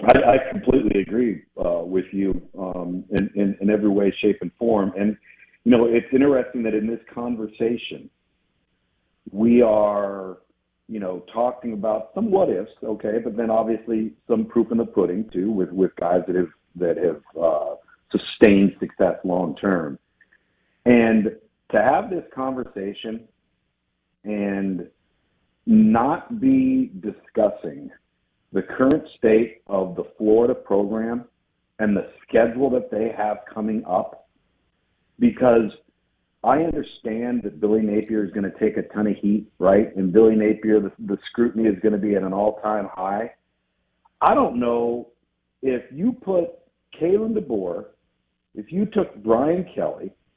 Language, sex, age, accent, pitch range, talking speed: English, male, 50-69, American, 100-120 Hz, 145 wpm